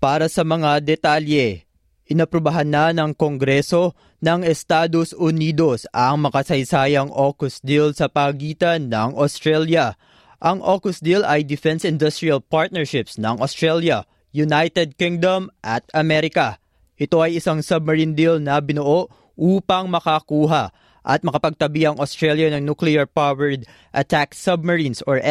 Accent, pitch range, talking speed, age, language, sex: native, 145-170 Hz, 120 wpm, 20-39, Filipino, male